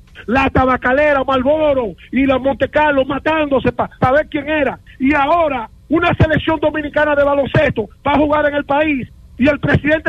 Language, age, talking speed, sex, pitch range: English, 40-59, 175 wpm, male, 250-310 Hz